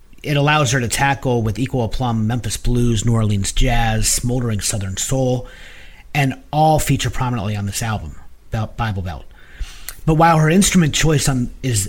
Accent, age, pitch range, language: American, 40-59, 105-140 Hz, English